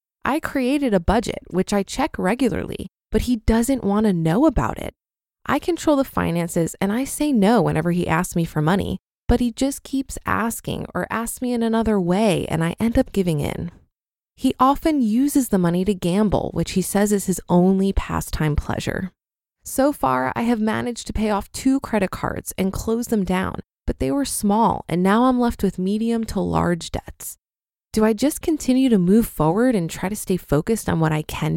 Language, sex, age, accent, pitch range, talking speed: English, female, 20-39, American, 185-240 Hz, 200 wpm